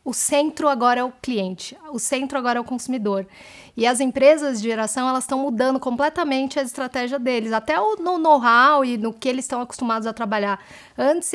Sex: female